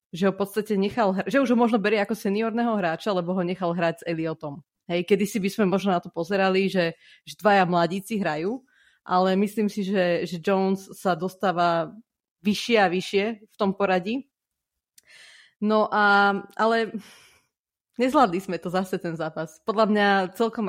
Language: Slovak